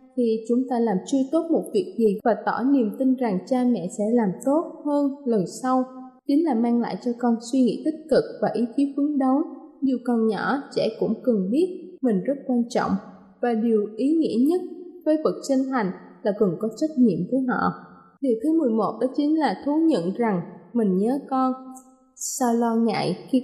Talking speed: 205 wpm